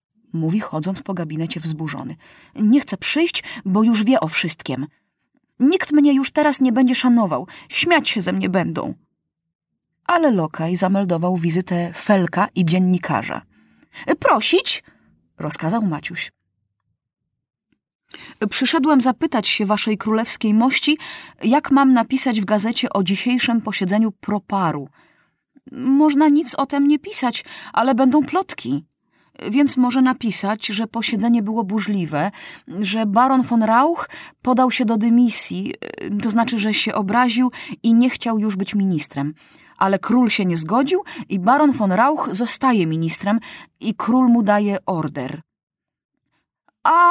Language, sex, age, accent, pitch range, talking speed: Polish, female, 30-49, native, 185-255 Hz, 130 wpm